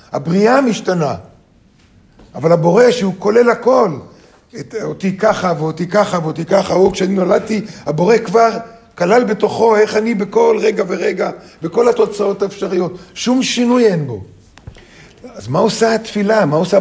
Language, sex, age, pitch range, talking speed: Hebrew, male, 50-69, 150-210 Hz, 140 wpm